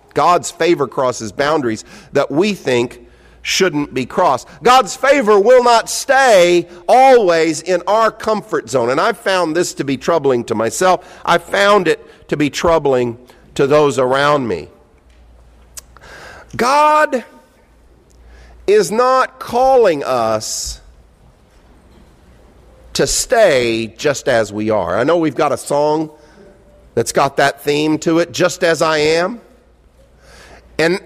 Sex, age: male, 50-69